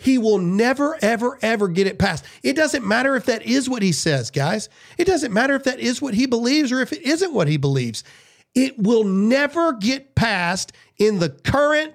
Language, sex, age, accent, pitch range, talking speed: English, male, 40-59, American, 165-250 Hz, 210 wpm